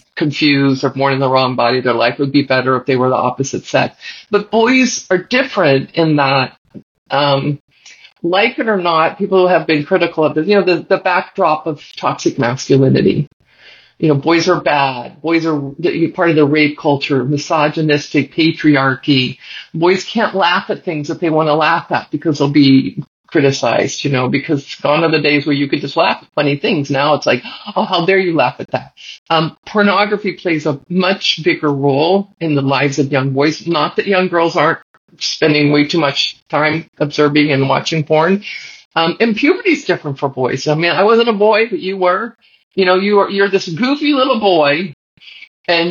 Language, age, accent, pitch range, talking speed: English, 50-69, American, 145-185 Hz, 195 wpm